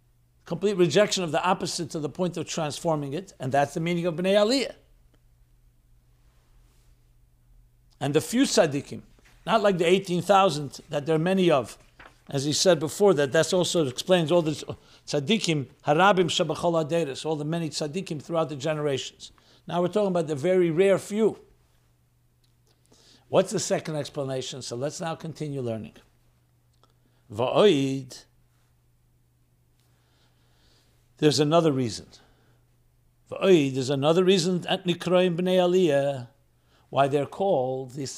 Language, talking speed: English, 125 wpm